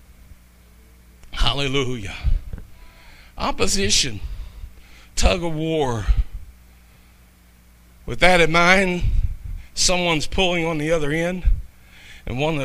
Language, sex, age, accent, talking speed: English, male, 50-69, American, 80 wpm